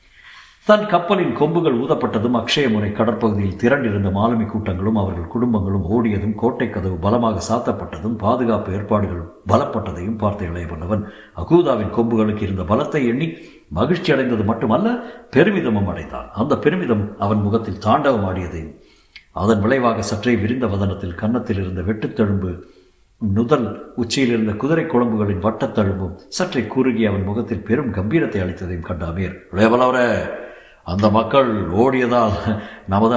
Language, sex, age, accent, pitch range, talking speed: Tamil, male, 60-79, native, 100-120 Hz, 110 wpm